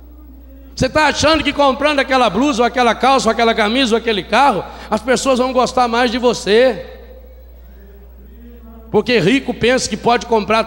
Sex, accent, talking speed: male, Brazilian, 165 wpm